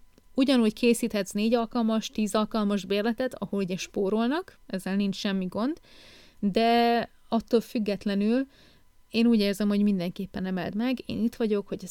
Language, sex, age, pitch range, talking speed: Hungarian, female, 30-49, 190-225 Hz, 135 wpm